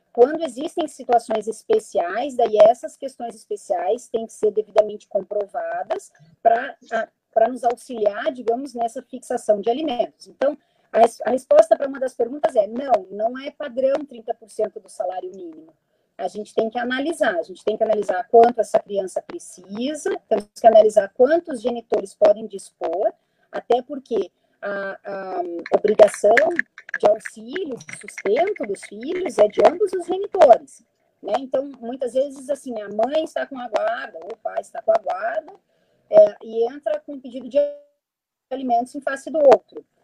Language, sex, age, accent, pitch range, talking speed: Portuguese, female, 30-49, Brazilian, 225-320 Hz, 155 wpm